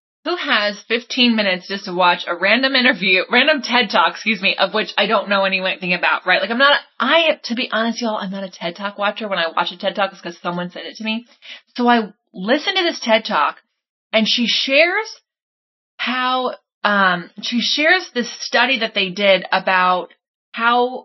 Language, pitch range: English, 195-255 Hz